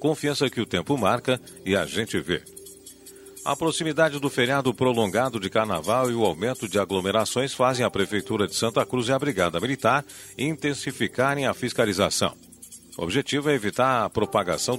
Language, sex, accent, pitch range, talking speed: Portuguese, male, Brazilian, 110-140 Hz, 160 wpm